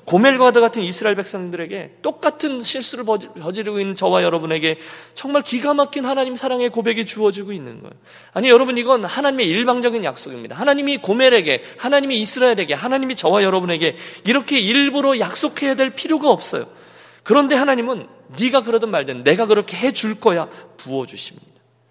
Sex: male